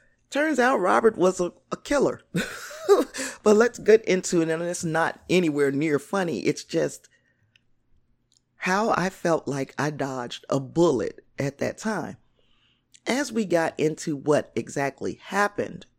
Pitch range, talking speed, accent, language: 140-195 Hz, 145 wpm, American, English